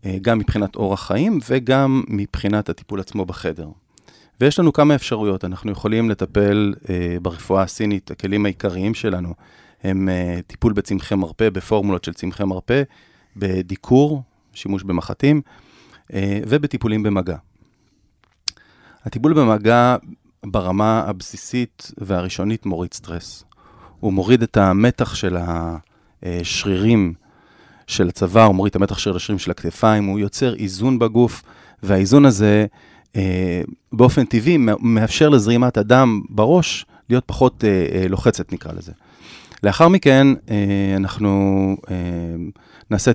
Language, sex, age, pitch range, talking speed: Hebrew, male, 30-49, 95-115 Hz, 120 wpm